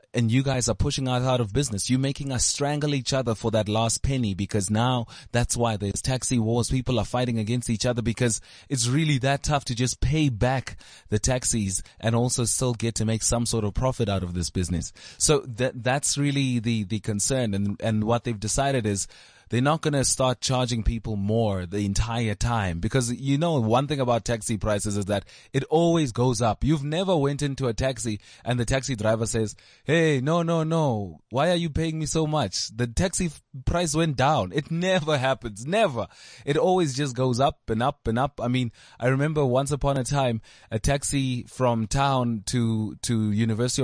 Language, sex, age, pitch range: English, male, 20-39, 110-135 Hz